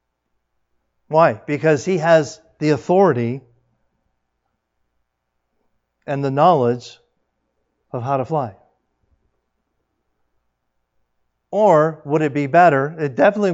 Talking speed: 90 wpm